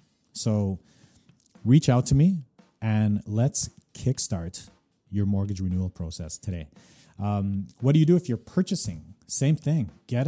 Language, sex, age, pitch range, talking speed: English, male, 30-49, 100-135 Hz, 140 wpm